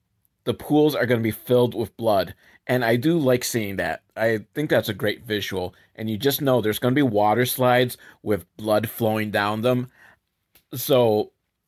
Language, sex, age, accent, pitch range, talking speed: English, male, 30-49, American, 105-130 Hz, 190 wpm